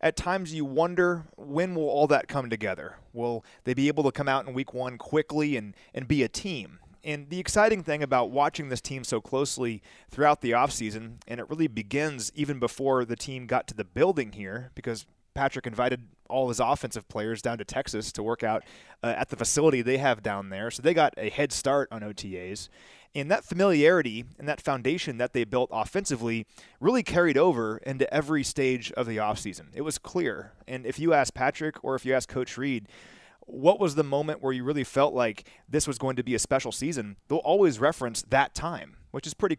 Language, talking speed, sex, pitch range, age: English, 210 wpm, male, 120-150 Hz, 30-49